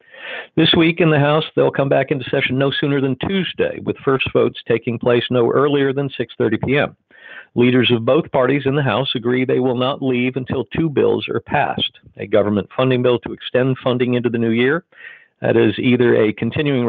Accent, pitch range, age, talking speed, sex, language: American, 115-135 Hz, 50-69, 205 wpm, male, English